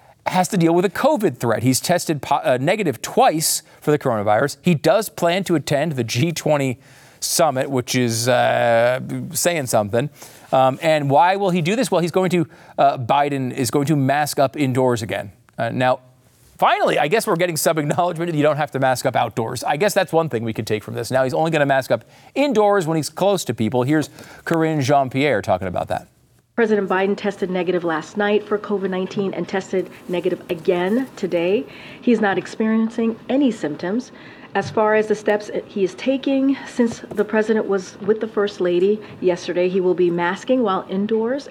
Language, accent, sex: English, American, male